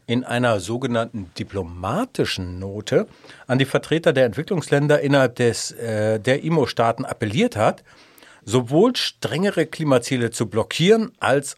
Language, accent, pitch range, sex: German, German, 115-155 Hz, male